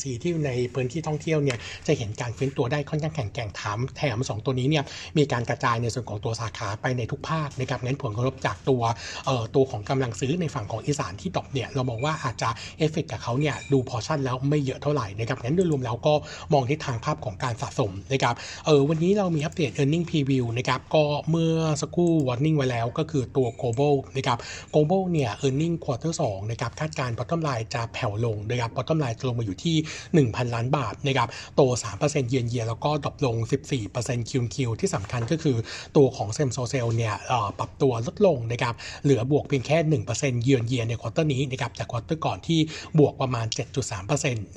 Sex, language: male, Thai